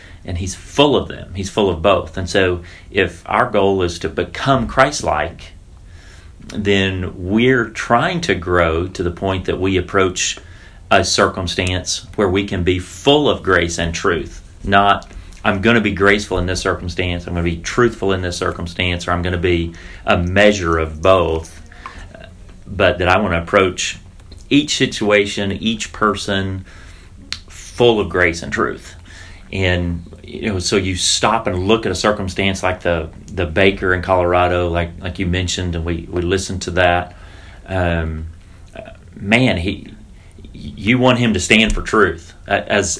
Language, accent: English, American